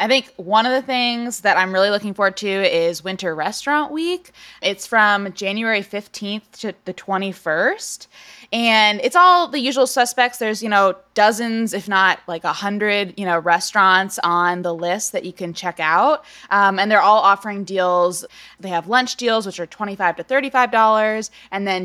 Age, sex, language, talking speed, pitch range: 20-39, female, English, 180 wpm, 180-235 Hz